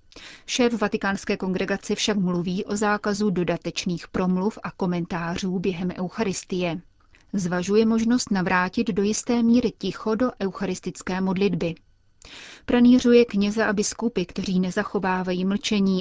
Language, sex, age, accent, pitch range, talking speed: Czech, female, 30-49, native, 185-210 Hz, 110 wpm